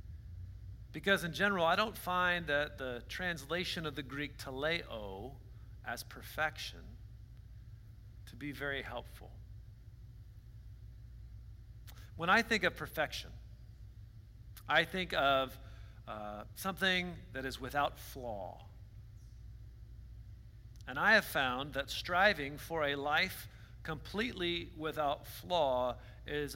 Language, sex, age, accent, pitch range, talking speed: English, male, 50-69, American, 105-145 Hz, 105 wpm